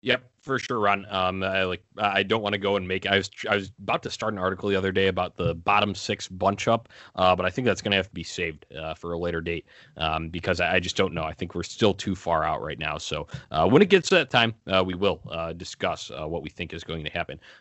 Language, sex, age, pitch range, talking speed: English, male, 20-39, 85-100 Hz, 290 wpm